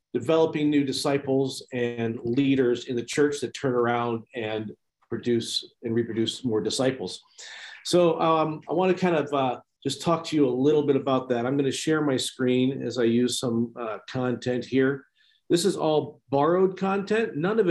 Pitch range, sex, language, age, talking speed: 120-155 Hz, male, English, 50-69, 185 wpm